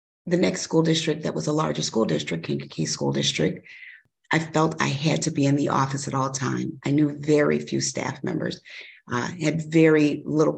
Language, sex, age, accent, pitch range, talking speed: English, female, 40-59, American, 125-165 Hz, 200 wpm